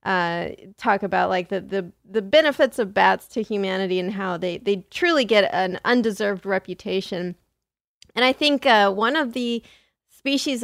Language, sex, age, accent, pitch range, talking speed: English, female, 30-49, American, 195-250 Hz, 165 wpm